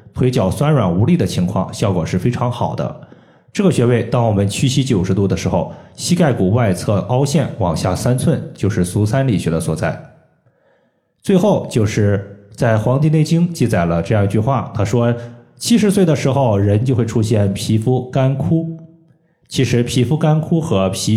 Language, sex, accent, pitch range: Chinese, male, native, 105-140 Hz